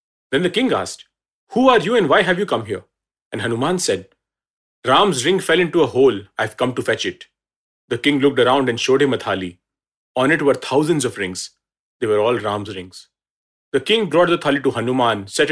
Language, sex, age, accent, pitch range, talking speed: English, male, 40-59, Indian, 105-140 Hz, 215 wpm